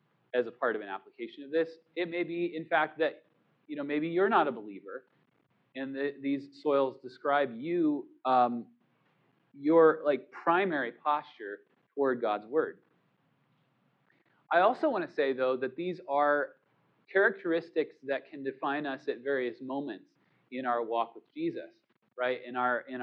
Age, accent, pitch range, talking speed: 30-49, American, 130-175 Hz, 160 wpm